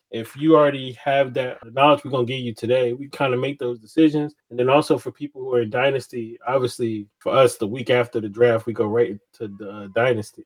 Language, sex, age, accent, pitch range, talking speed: English, male, 20-39, American, 125-160 Hz, 235 wpm